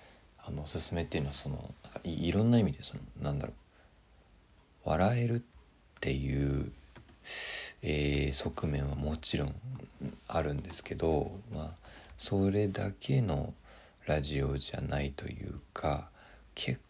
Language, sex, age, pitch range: Japanese, male, 40-59, 70-100 Hz